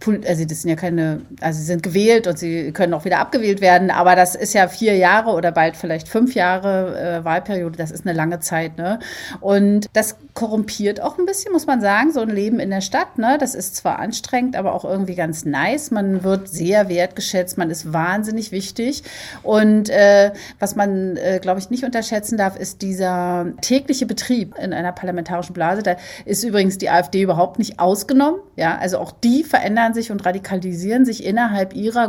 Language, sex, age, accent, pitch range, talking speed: German, female, 40-59, German, 175-225 Hz, 195 wpm